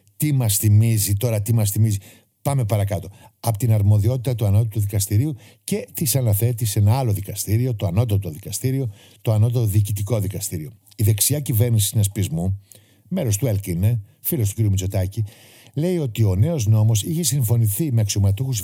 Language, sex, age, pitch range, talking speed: Greek, male, 60-79, 100-120 Hz, 160 wpm